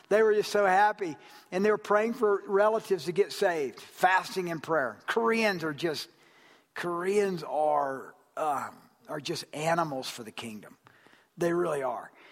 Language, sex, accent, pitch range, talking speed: English, male, American, 145-190 Hz, 155 wpm